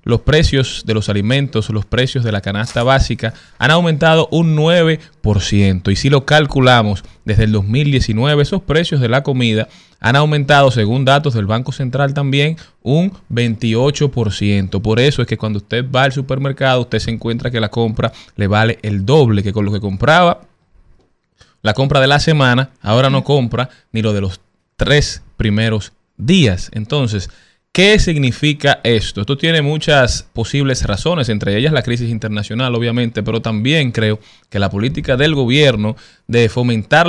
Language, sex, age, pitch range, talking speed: Spanish, male, 20-39, 110-140 Hz, 165 wpm